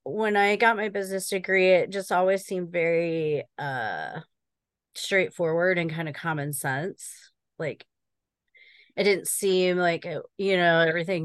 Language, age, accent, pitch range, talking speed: English, 30-49, American, 170-205 Hz, 140 wpm